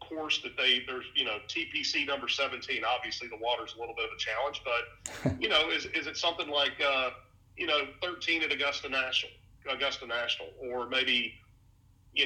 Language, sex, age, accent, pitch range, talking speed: English, male, 40-59, American, 110-145 Hz, 185 wpm